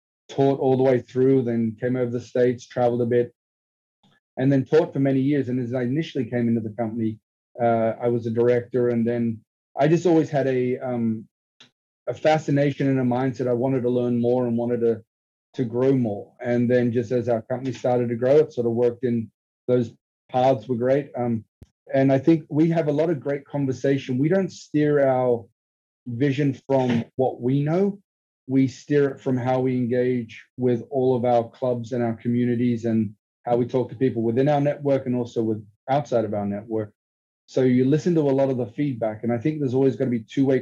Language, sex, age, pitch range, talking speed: English, male, 30-49, 120-135 Hz, 215 wpm